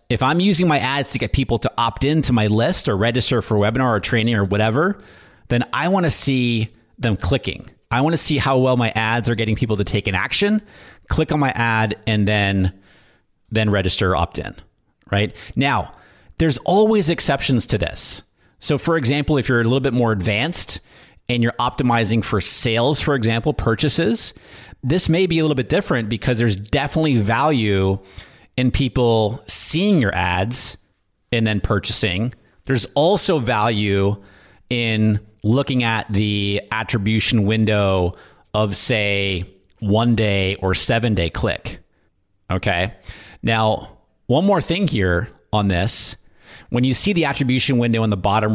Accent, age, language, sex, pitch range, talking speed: American, 30-49, English, male, 100-130 Hz, 165 wpm